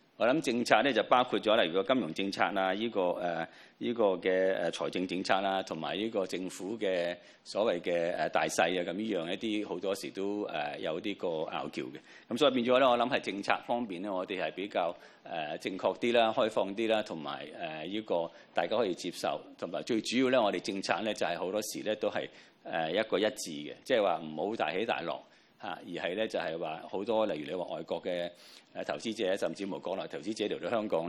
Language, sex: Chinese, male